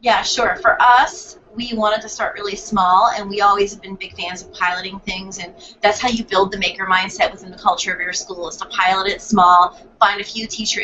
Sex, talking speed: female, 240 wpm